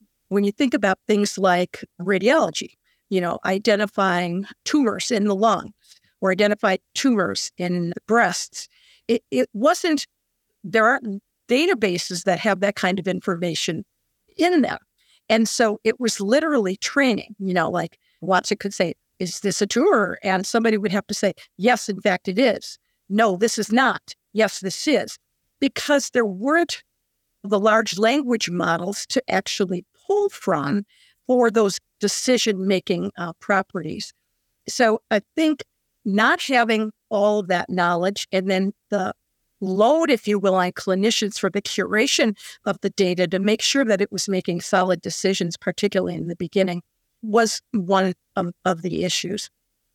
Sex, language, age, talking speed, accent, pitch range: female, English, 50-69, 150 wpm, American, 190-225 Hz